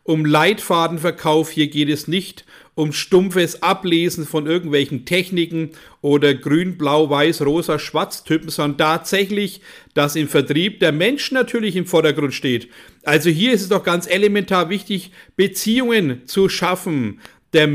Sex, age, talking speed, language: male, 50-69, 140 wpm, German